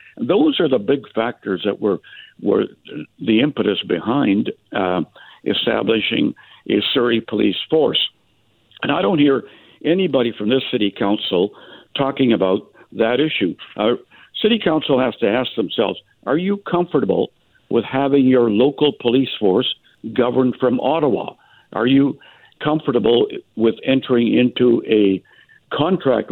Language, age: English, 60-79